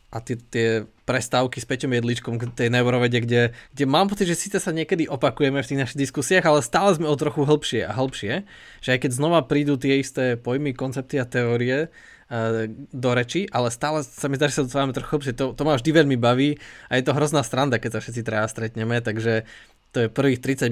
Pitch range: 120-140 Hz